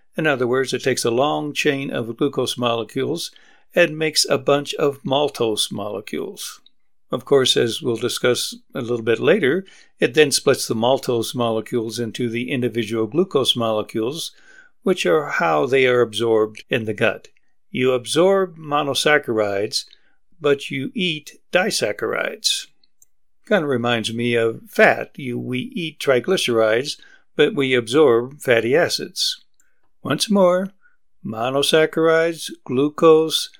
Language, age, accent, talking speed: English, 60-79, American, 130 wpm